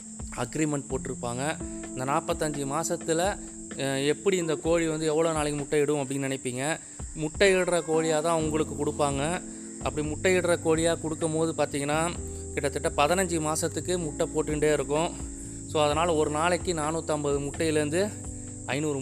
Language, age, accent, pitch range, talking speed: Tamil, 20-39, native, 135-160 Hz, 125 wpm